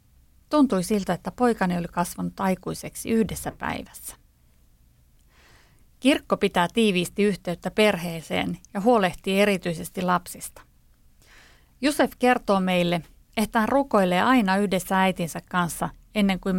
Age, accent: 30-49, native